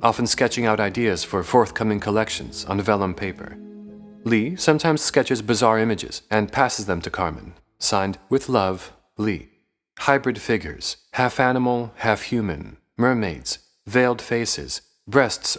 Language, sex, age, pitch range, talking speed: English, male, 40-59, 100-130 Hz, 125 wpm